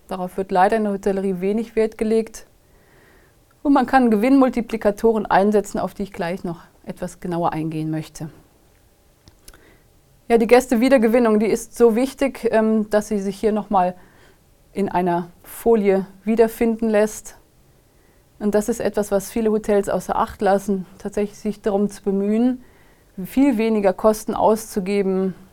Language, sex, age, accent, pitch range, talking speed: German, female, 30-49, German, 185-220 Hz, 140 wpm